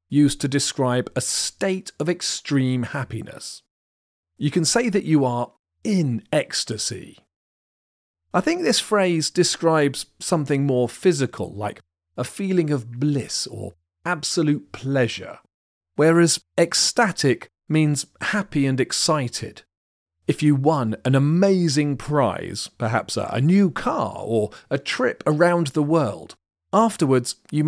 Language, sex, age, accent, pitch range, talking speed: English, male, 40-59, British, 115-165 Hz, 120 wpm